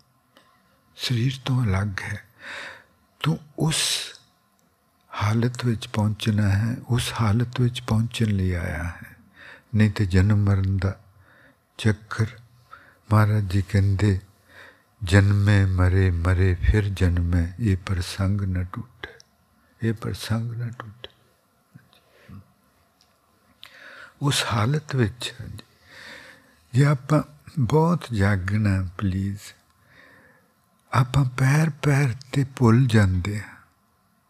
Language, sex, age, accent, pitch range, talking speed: English, male, 60-79, Indian, 100-125 Hz, 50 wpm